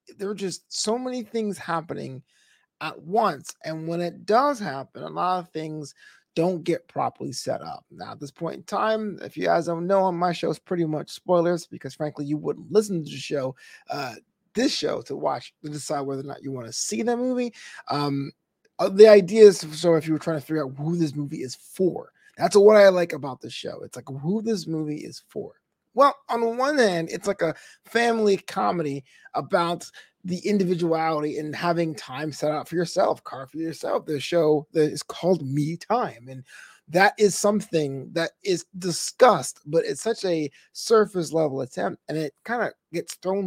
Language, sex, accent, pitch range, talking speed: English, male, American, 150-195 Hz, 200 wpm